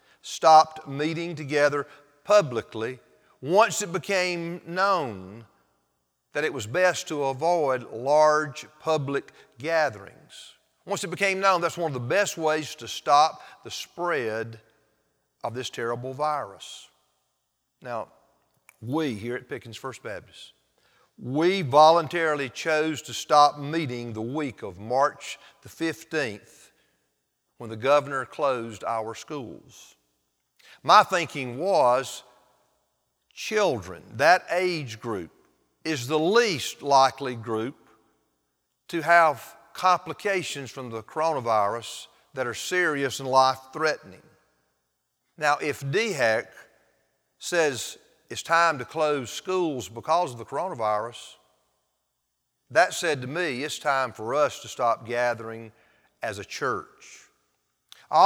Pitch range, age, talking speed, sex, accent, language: 115-160 Hz, 50-69, 115 wpm, male, American, English